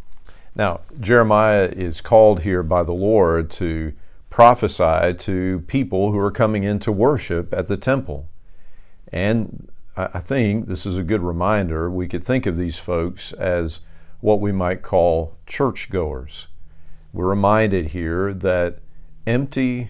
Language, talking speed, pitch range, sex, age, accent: English, 140 wpm, 80-100 Hz, male, 50-69, American